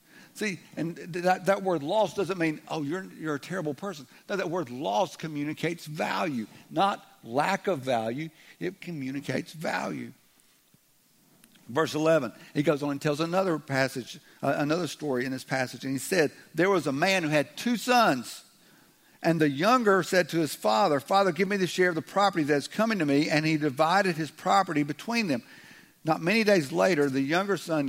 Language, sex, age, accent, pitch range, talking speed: English, male, 60-79, American, 145-185 Hz, 185 wpm